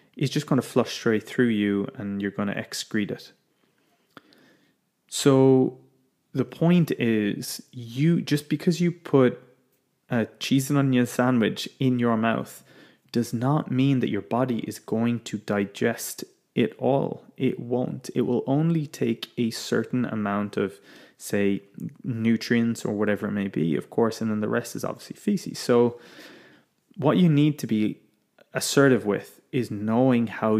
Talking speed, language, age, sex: 155 wpm, English, 20-39, male